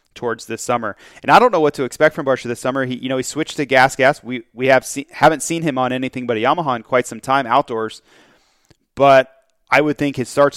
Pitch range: 120-145 Hz